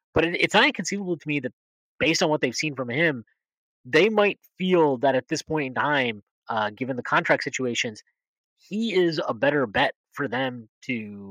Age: 20-39